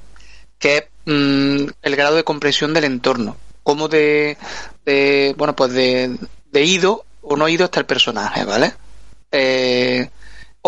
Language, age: Spanish, 30-49